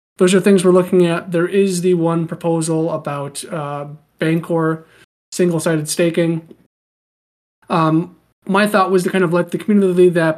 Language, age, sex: English, 30-49, male